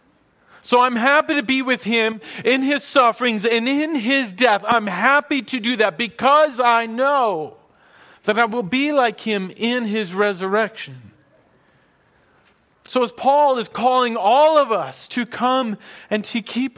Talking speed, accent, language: 155 wpm, American, English